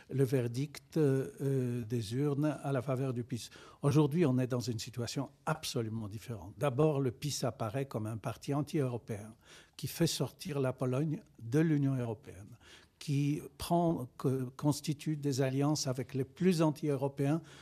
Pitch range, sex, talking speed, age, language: 130-155 Hz, male, 145 wpm, 60-79, French